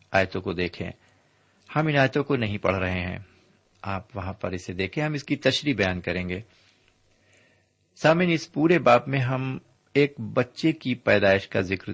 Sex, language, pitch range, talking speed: male, Urdu, 95-125 Hz, 170 wpm